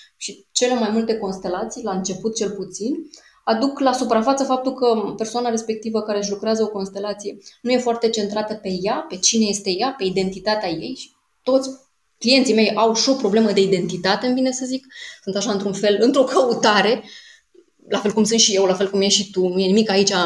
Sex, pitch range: female, 195-225 Hz